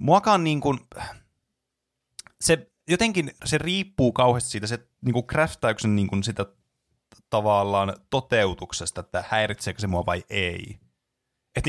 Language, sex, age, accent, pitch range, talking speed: Finnish, male, 30-49, native, 95-125 Hz, 120 wpm